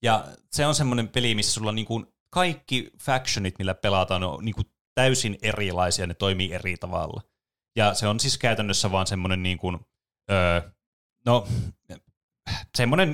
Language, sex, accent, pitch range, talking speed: Finnish, male, native, 95-115 Hz, 155 wpm